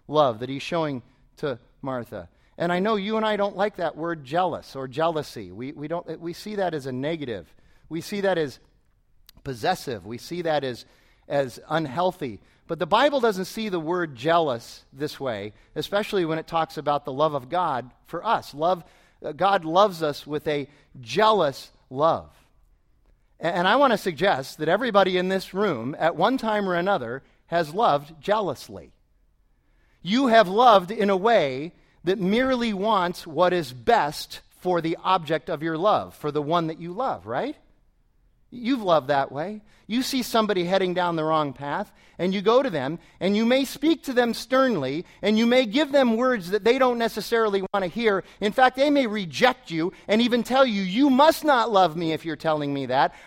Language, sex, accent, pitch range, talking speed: English, male, American, 150-220 Hz, 190 wpm